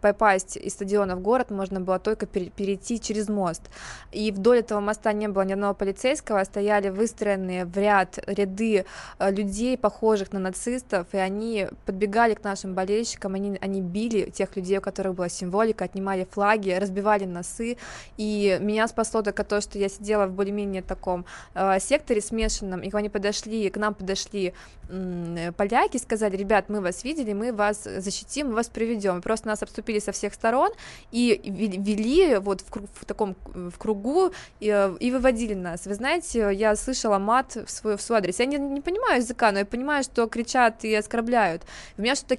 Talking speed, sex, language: 175 wpm, female, Russian